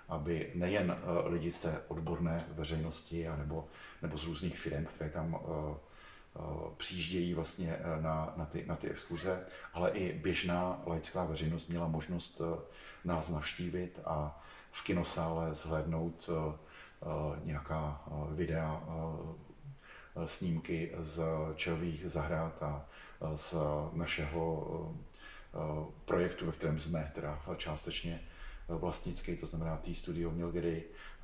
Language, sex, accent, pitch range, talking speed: Czech, male, native, 80-85 Hz, 100 wpm